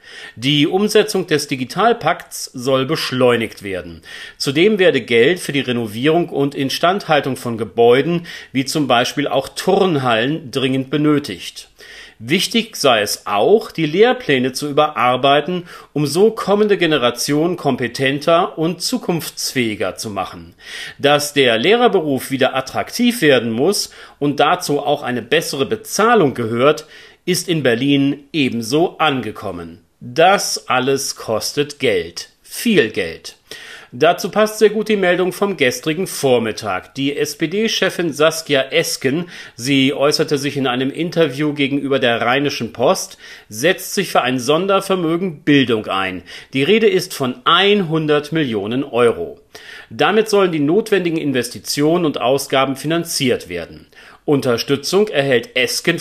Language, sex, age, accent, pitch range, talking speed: German, male, 40-59, German, 130-180 Hz, 125 wpm